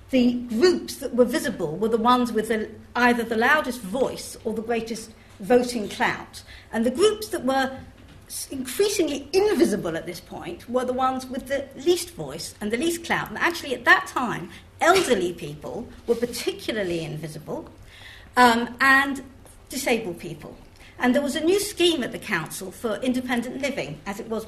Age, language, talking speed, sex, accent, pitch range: 50-69, English, 165 wpm, female, British, 215-290 Hz